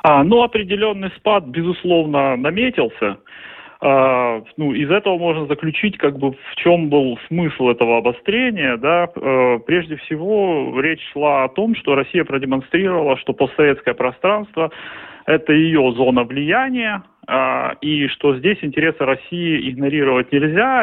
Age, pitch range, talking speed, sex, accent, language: 30-49, 130-165 Hz, 135 wpm, male, native, Russian